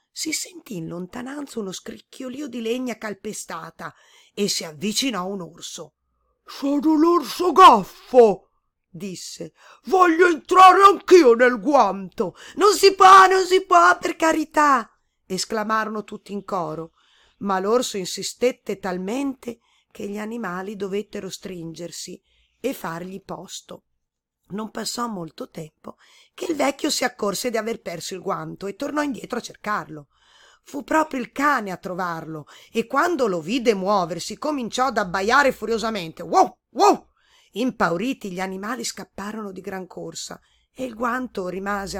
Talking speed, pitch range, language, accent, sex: 135 wpm, 190-260 Hz, Italian, native, female